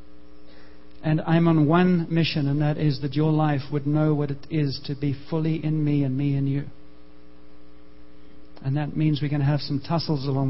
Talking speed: 200 wpm